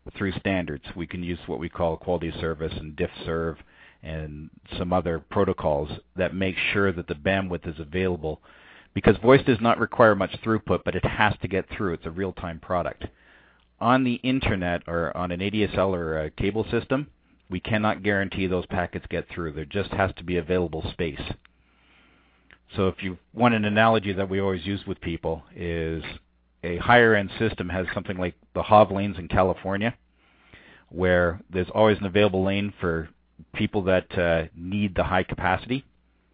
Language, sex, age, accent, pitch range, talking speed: English, male, 50-69, American, 85-105 Hz, 175 wpm